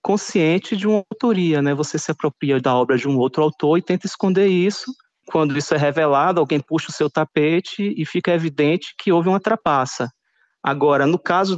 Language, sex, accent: Portuguese, male, Brazilian